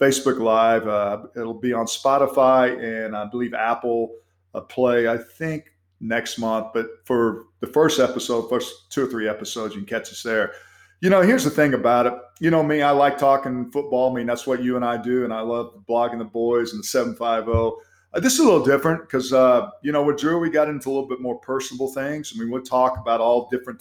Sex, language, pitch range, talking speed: male, English, 115-135 Hz, 225 wpm